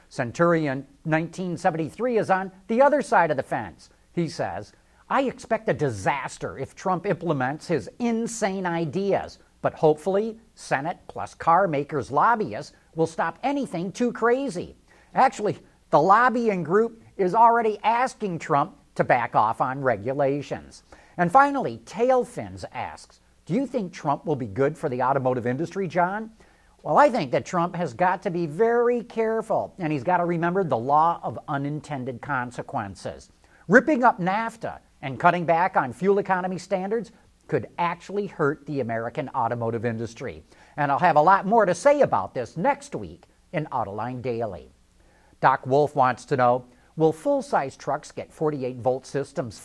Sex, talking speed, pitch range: male, 155 wpm, 140-210 Hz